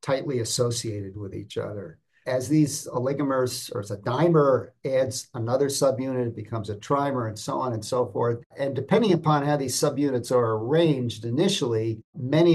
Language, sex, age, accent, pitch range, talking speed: English, male, 50-69, American, 115-150 Hz, 165 wpm